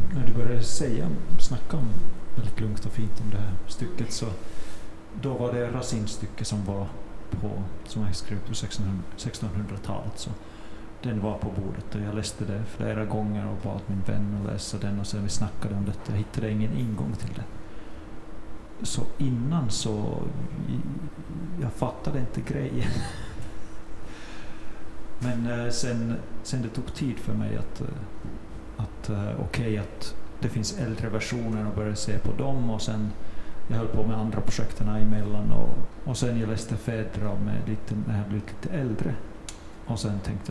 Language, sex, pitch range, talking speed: Swedish, male, 105-115 Hz, 165 wpm